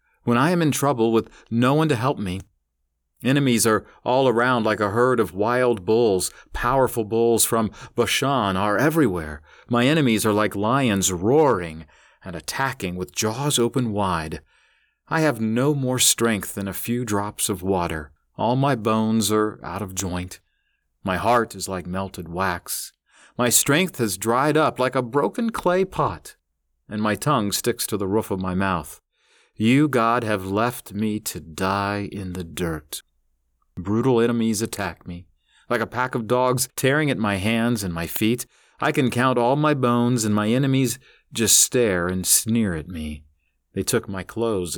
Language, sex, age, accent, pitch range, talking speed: English, male, 40-59, American, 95-125 Hz, 170 wpm